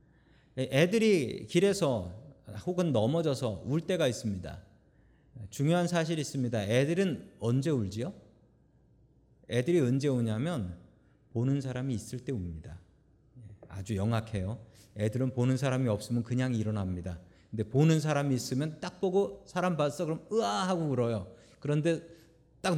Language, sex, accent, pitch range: Korean, male, native, 110-160 Hz